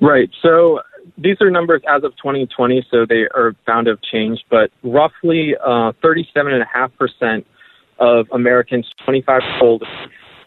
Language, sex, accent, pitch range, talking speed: English, male, American, 120-145 Hz, 130 wpm